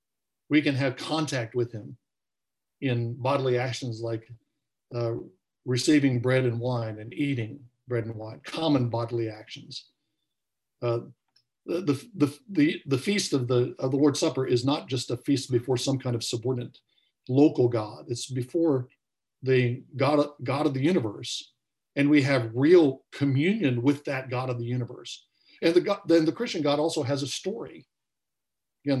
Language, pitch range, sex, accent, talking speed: English, 120-145 Hz, male, American, 155 wpm